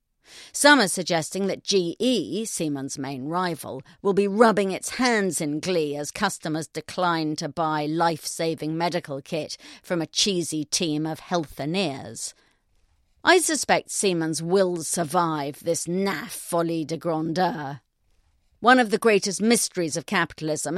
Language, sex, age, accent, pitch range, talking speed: English, female, 50-69, British, 155-200 Hz, 135 wpm